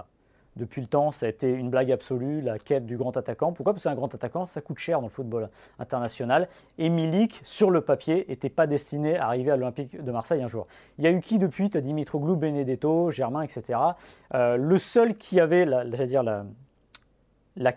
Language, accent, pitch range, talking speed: French, French, 125-165 Hz, 205 wpm